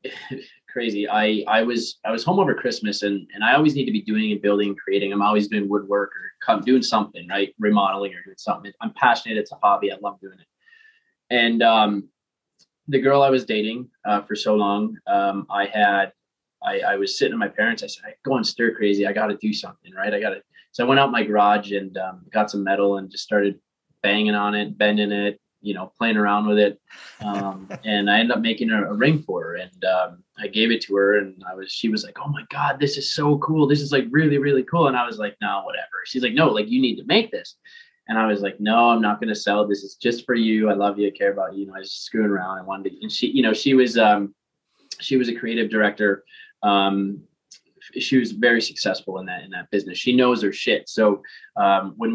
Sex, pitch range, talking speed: male, 100-125 Hz, 250 wpm